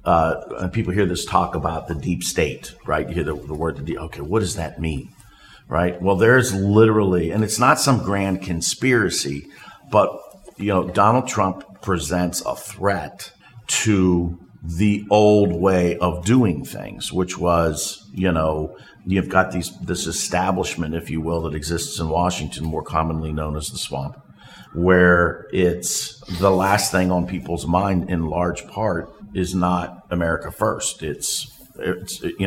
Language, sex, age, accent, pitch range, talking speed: English, male, 50-69, American, 85-100 Hz, 165 wpm